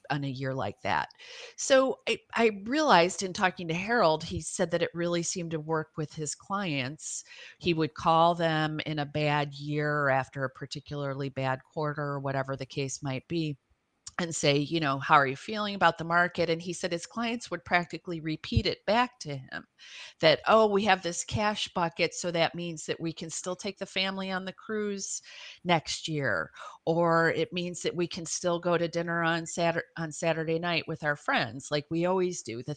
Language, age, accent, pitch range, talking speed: English, 40-59, American, 145-175 Hz, 205 wpm